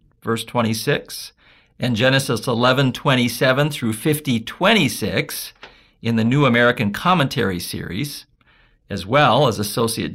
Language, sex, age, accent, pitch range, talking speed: English, male, 50-69, American, 115-155 Hz, 100 wpm